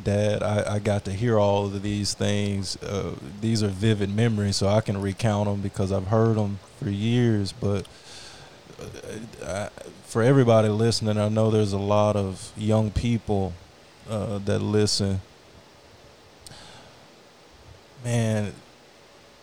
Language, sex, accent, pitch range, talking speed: English, male, American, 100-110 Hz, 135 wpm